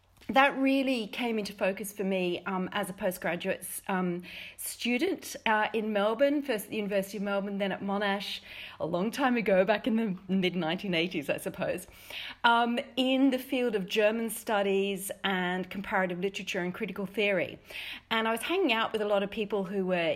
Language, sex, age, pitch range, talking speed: English, female, 40-59, 180-225 Hz, 180 wpm